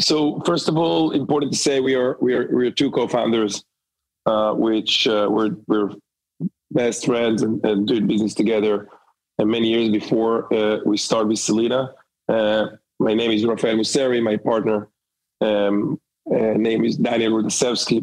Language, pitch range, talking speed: English, 105-120 Hz, 165 wpm